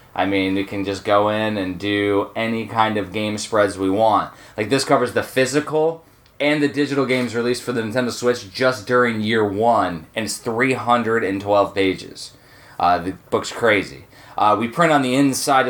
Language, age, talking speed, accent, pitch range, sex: English, 20-39, 185 wpm, American, 105-130 Hz, male